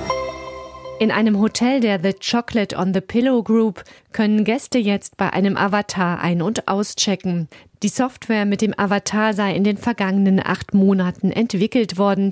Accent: German